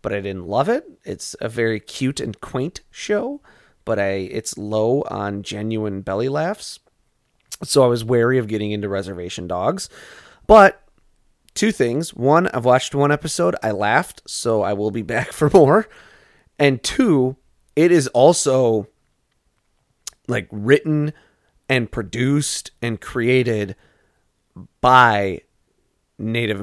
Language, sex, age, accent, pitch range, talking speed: English, male, 30-49, American, 100-135 Hz, 135 wpm